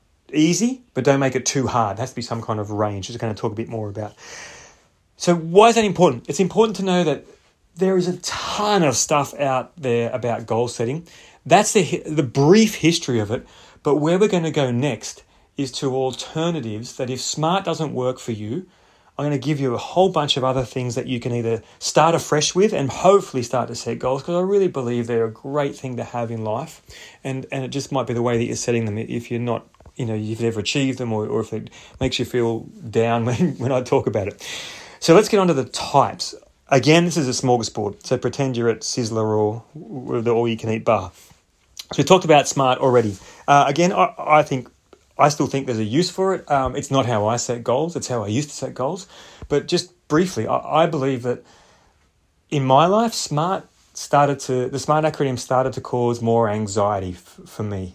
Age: 30-49